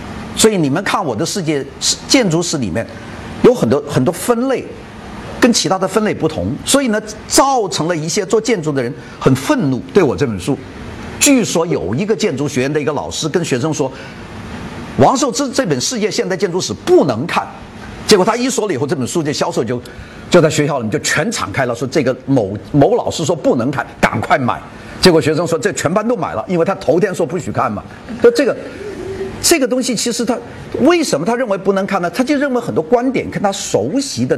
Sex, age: male, 50-69